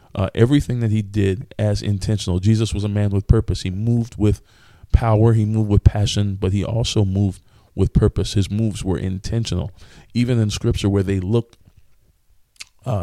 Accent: American